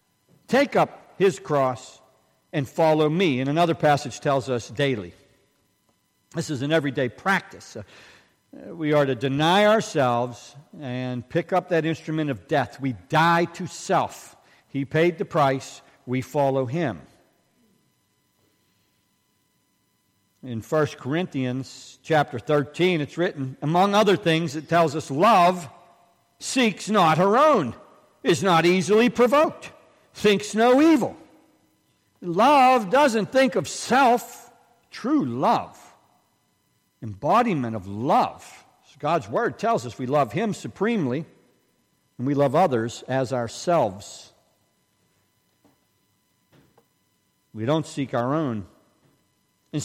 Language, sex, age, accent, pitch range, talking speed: English, male, 50-69, American, 130-190 Hz, 115 wpm